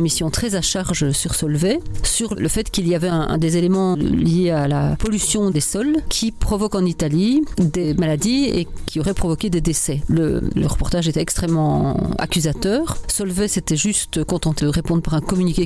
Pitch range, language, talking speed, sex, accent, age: 160-195 Hz, French, 190 wpm, female, French, 40-59